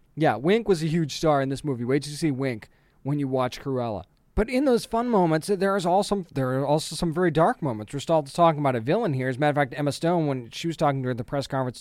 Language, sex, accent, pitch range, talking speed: English, male, American, 135-165 Hz, 275 wpm